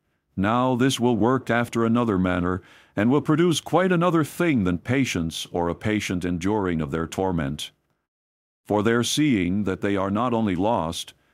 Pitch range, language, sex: 95-130 Hz, English, male